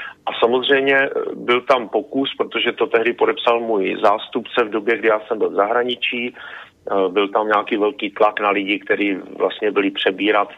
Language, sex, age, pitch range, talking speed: Czech, male, 40-59, 110-150 Hz, 170 wpm